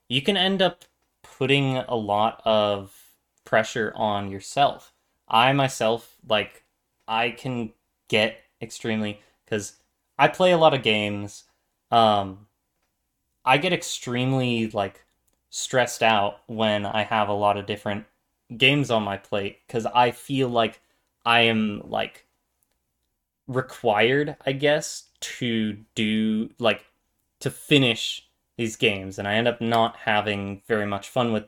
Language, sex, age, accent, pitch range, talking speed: English, male, 20-39, American, 105-130 Hz, 135 wpm